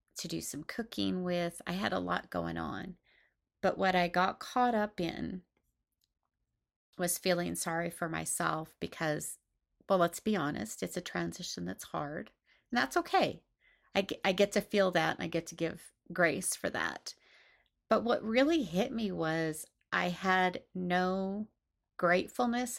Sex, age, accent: female, 30-49, American